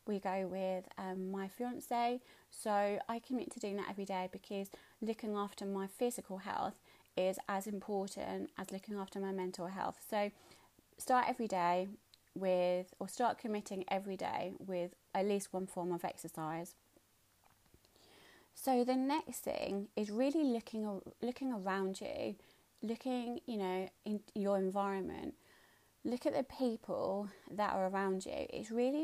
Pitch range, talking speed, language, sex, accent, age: 190-235 Hz, 150 wpm, English, female, British, 30-49